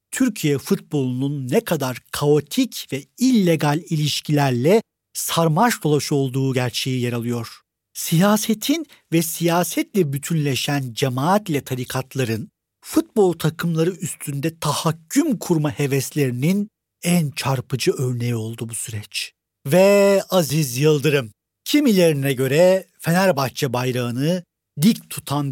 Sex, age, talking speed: male, 50-69, 95 wpm